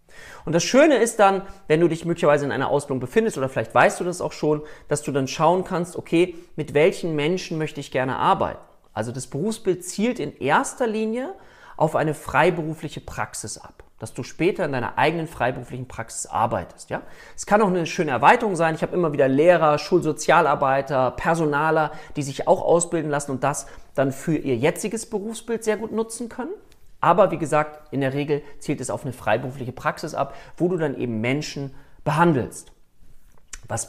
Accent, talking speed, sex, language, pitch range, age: German, 185 wpm, male, German, 130-180 Hz, 40-59